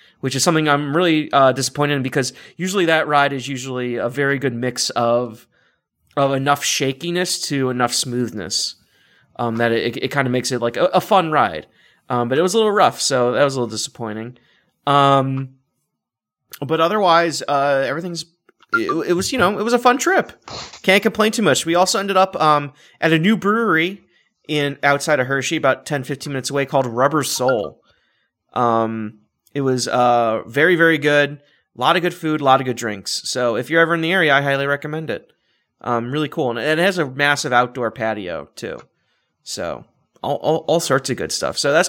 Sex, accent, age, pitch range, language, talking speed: male, American, 30-49, 125-165 Hz, English, 200 wpm